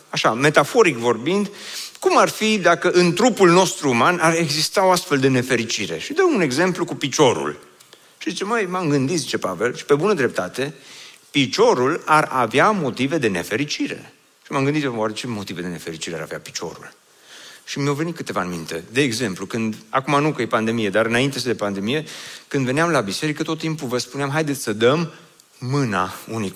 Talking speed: 185 wpm